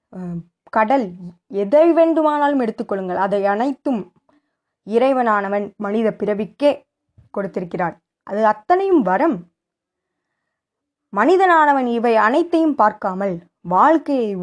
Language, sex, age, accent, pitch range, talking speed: Tamil, female, 20-39, native, 200-275 Hz, 75 wpm